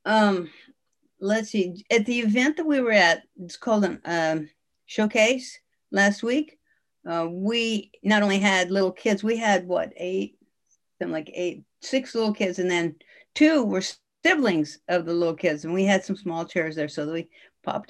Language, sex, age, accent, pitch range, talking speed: English, female, 50-69, American, 165-225 Hz, 180 wpm